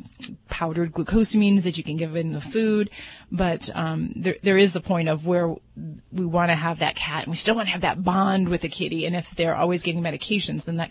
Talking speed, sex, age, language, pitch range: 235 wpm, female, 30-49, English, 160-190 Hz